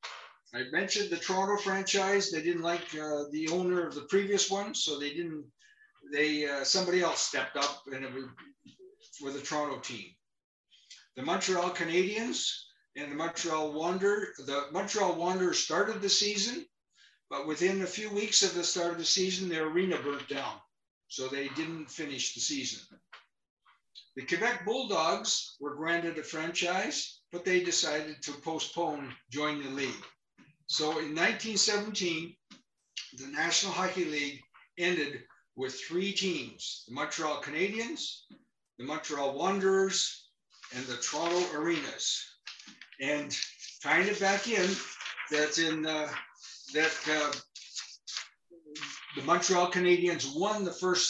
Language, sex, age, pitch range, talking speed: English, male, 60-79, 145-190 Hz, 135 wpm